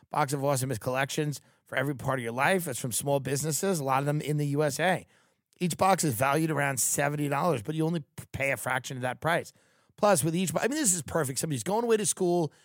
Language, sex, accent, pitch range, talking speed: English, male, American, 130-175 Hz, 240 wpm